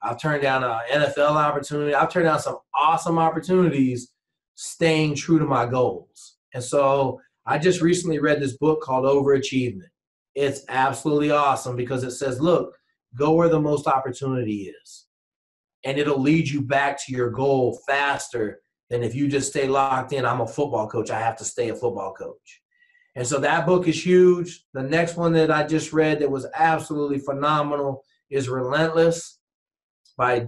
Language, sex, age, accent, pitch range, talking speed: English, male, 30-49, American, 130-160 Hz, 175 wpm